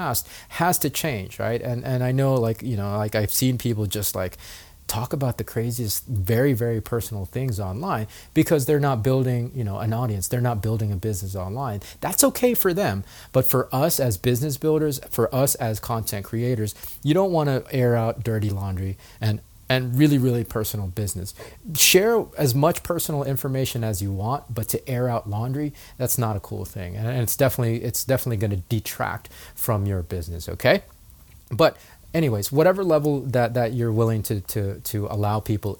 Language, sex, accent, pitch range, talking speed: English, male, American, 105-135 Hz, 190 wpm